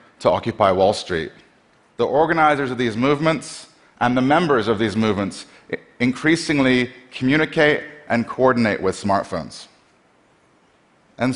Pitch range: 105-130 Hz